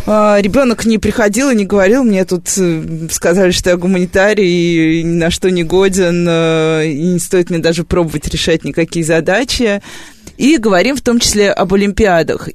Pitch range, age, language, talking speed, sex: 170-220 Hz, 20-39, Russian, 165 wpm, female